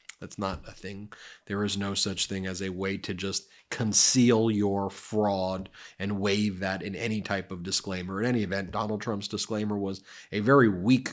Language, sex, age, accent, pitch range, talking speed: English, male, 30-49, American, 100-120 Hz, 190 wpm